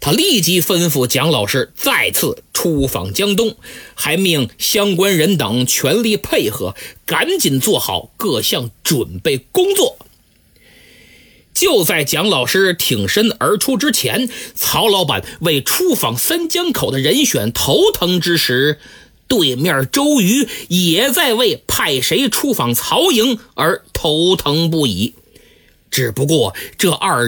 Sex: male